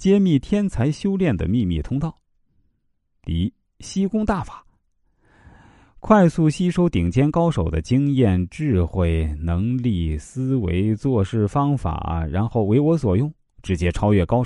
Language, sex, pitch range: Chinese, male, 85-130 Hz